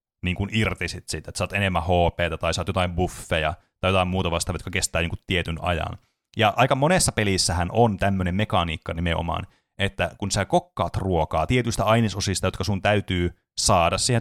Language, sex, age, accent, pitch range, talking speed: Finnish, male, 30-49, native, 90-105 Hz, 170 wpm